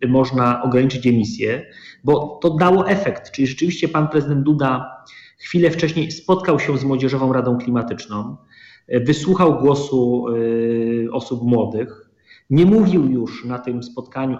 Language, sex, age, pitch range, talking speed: Polish, male, 30-49, 130-155 Hz, 130 wpm